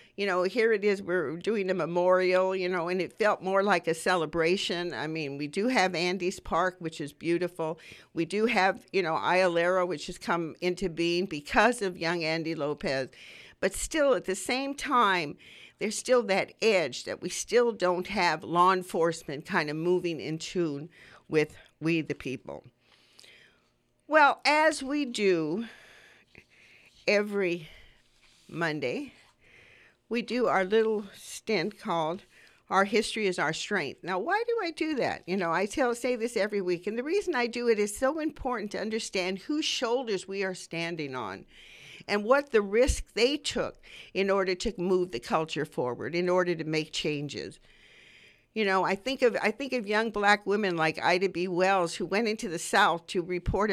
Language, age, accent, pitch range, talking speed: English, 50-69, American, 175-220 Hz, 175 wpm